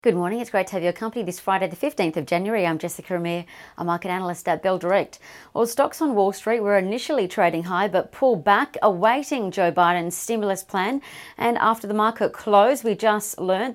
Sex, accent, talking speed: female, Australian, 210 wpm